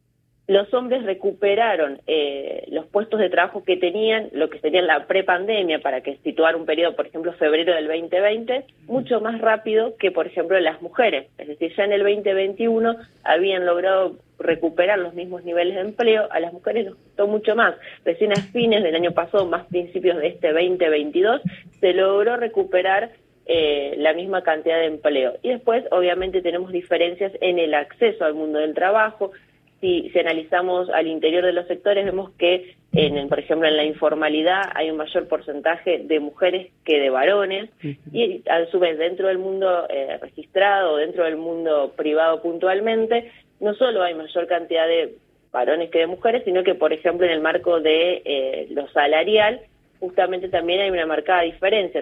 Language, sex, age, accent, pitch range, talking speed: Spanish, female, 20-39, Argentinian, 160-200 Hz, 180 wpm